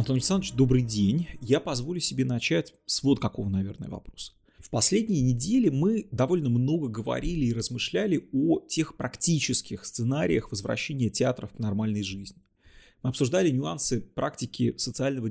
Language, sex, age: Russian, male, 30-49